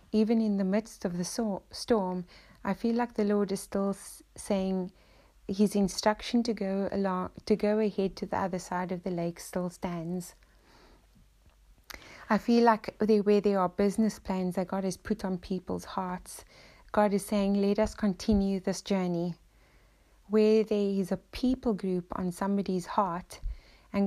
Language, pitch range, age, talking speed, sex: English, 185-215 Hz, 30-49, 170 wpm, female